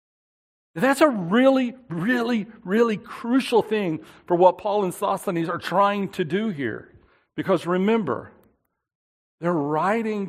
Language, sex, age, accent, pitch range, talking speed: English, male, 60-79, American, 155-215 Hz, 120 wpm